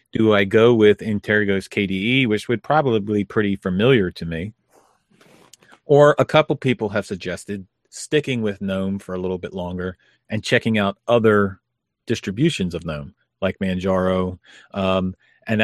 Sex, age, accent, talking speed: male, 40-59, American, 150 wpm